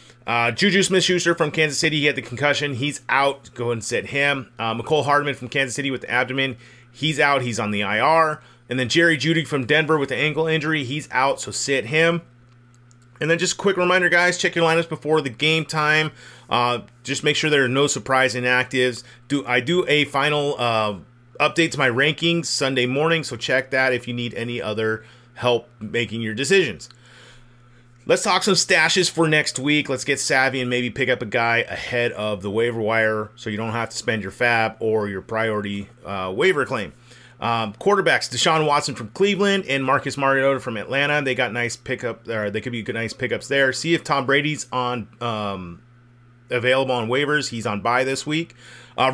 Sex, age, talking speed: male, 30-49, 205 wpm